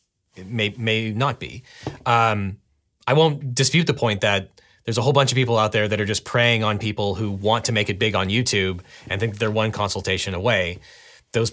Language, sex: English, male